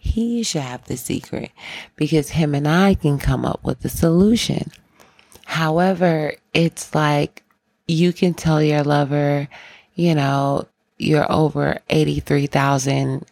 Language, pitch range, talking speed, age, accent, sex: English, 135-170 Hz, 125 wpm, 30-49, American, female